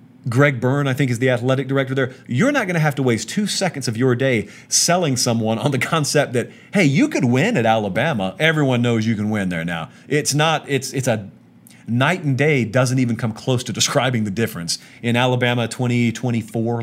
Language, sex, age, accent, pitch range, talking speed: English, male, 40-59, American, 110-135 Hz, 205 wpm